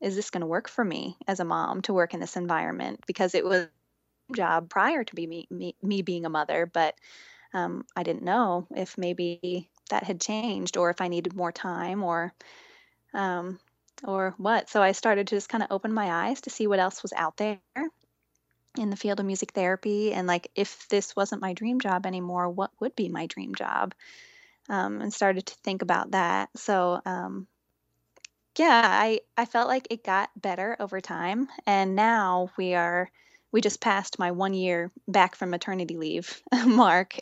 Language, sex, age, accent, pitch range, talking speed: English, female, 10-29, American, 175-210 Hz, 195 wpm